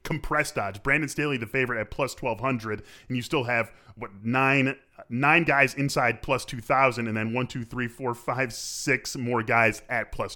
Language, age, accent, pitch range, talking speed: English, 20-39, American, 110-140 Hz, 185 wpm